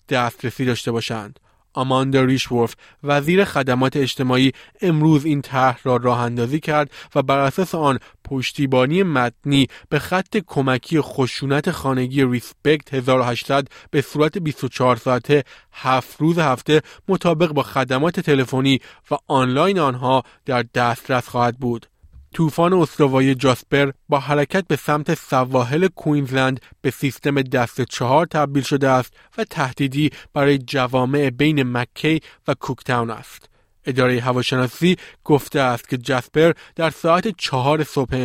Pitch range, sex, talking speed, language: 125-150 Hz, male, 125 wpm, Persian